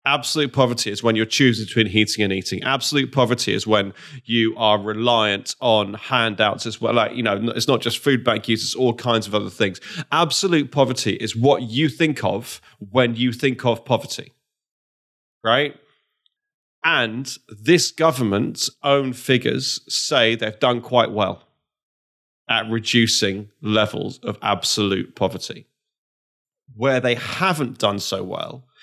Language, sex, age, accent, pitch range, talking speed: English, male, 30-49, British, 115-145 Hz, 140 wpm